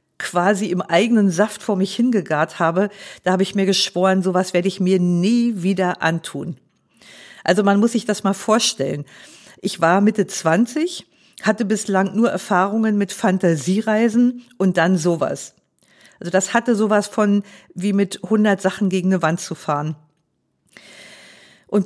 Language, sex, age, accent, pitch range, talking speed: German, female, 50-69, German, 180-220 Hz, 150 wpm